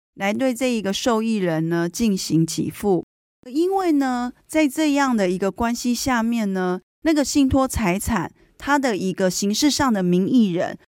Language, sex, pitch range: Chinese, female, 185-260 Hz